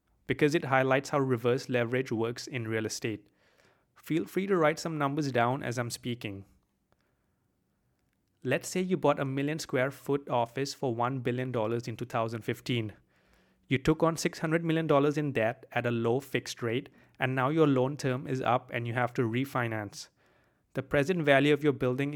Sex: male